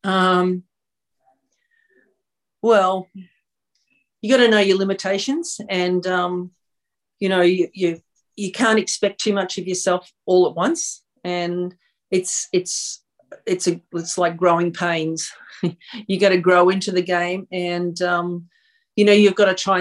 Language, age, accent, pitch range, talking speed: English, 40-59, Australian, 165-195 Hz, 140 wpm